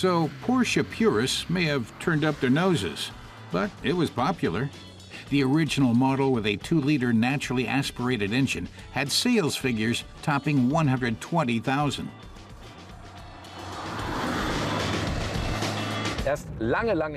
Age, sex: 60-79, male